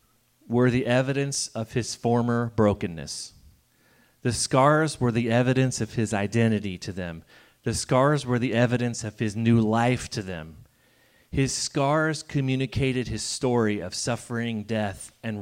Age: 30-49